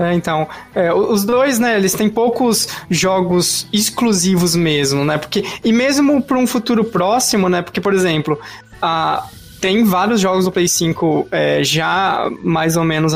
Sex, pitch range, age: male, 160-190 Hz, 20-39